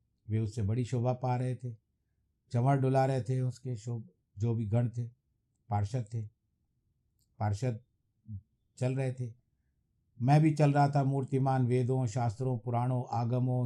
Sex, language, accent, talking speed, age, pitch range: male, Hindi, native, 145 wpm, 50-69, 105-125 Hz